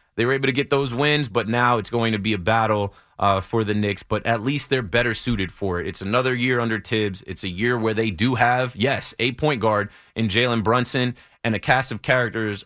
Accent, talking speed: American, 240 wpm